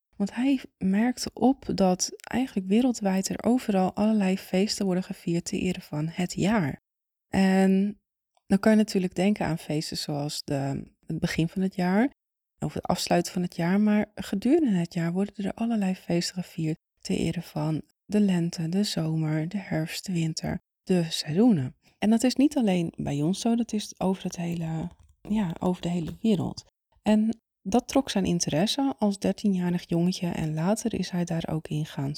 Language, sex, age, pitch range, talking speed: Dutch, female, 20-39, 165-210 Hz, 180 wpm